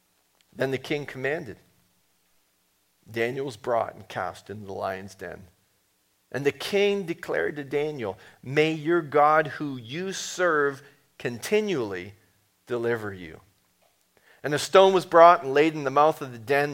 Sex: male